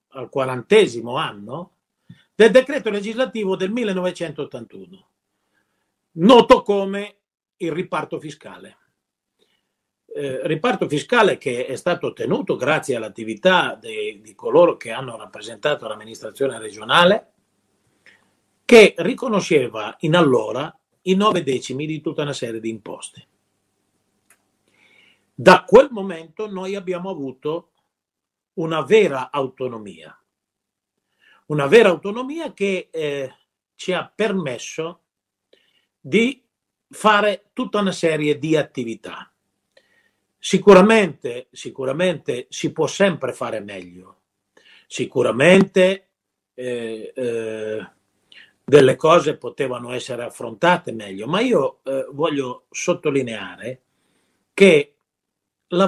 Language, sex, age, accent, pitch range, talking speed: Italian, male, 50-69, native, 135-205 Hz, 95 wpm